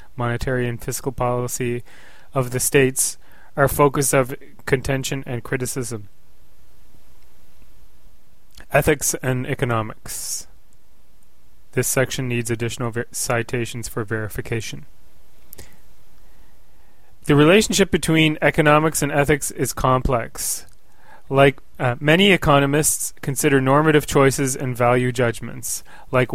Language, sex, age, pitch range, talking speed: English, male, 30-49, 120-140 Hz, 95 wpm